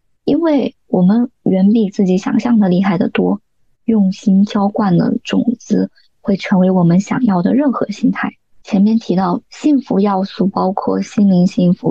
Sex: male